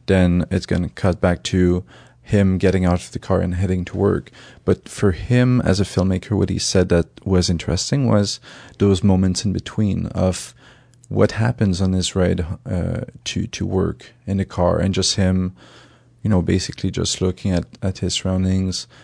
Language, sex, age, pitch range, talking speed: English, male, 30-49, 95-110 Hz, 185 wpm